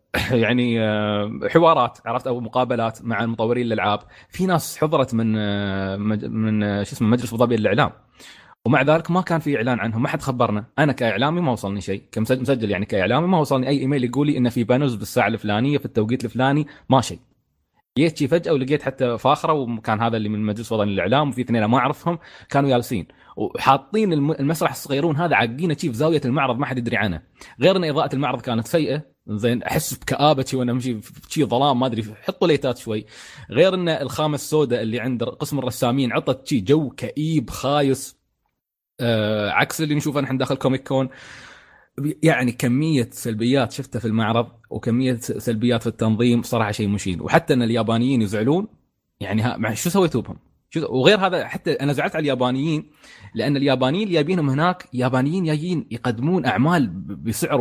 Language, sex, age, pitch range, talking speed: Arabic, male, 20-39, 110-145 Hz, 170 wpm